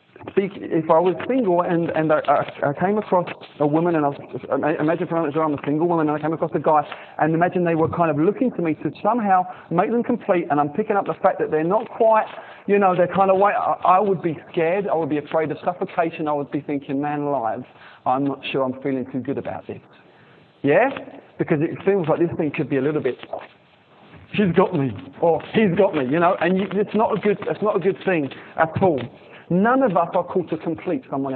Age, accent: 30-49, British